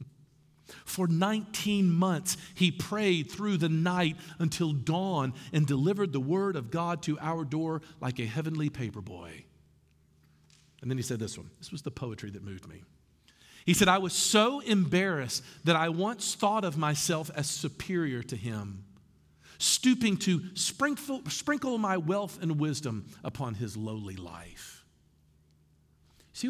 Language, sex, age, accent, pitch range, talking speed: English, male, 50-69, American, 130-210 Hz, 145 wpm